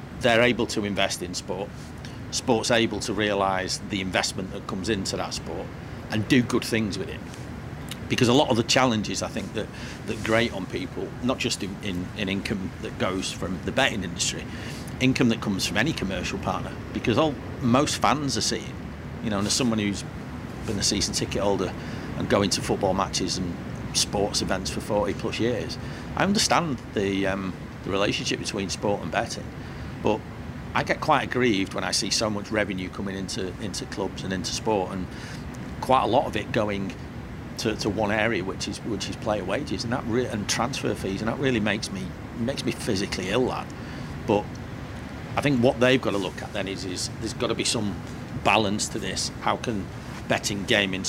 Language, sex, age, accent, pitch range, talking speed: English, male, 50-69, British, 95-115 Hz, 200 wpm